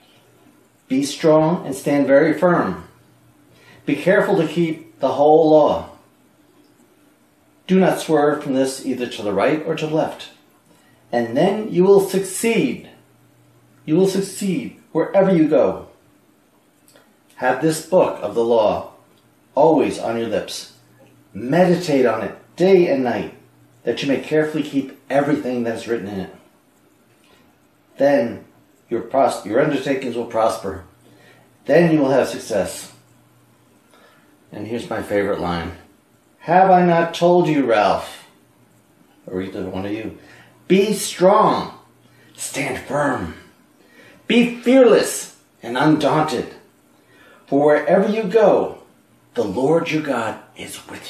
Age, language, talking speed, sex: 40-59, English, 130 wpm, male